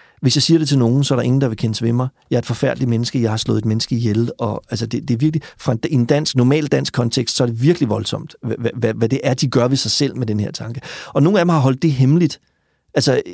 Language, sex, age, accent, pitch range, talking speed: Danish, male, 40-59, native, 115-145 Hz, 275 wpm